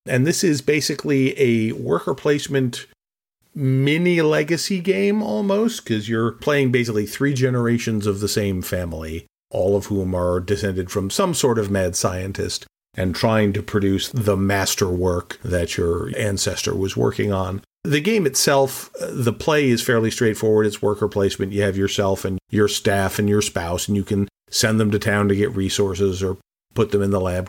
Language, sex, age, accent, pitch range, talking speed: English, male, 40-59, American, 100-120 Hz, 175 wpm